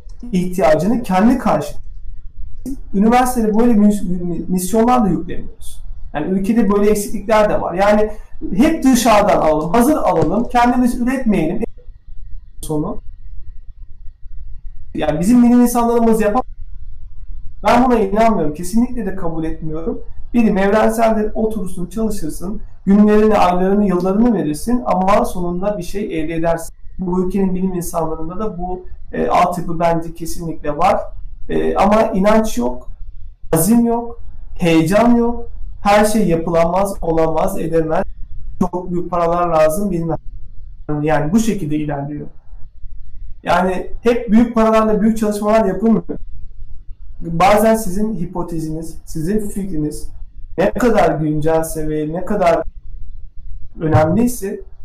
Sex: male